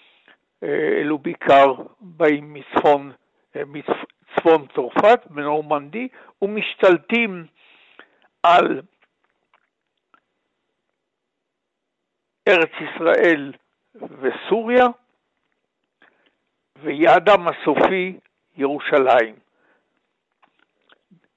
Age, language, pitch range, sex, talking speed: 60-79, Hebrew, 155-230 Hz, male, 40 wpm